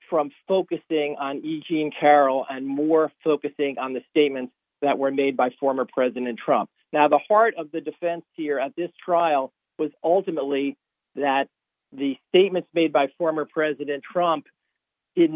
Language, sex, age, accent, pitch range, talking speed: English, male, 50-69, American, 140-160 Hz, 150 wpm